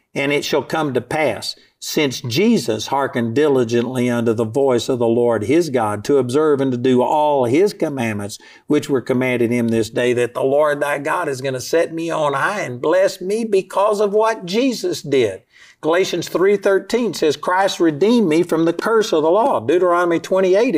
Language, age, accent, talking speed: English, 50-69, American, 190 wpm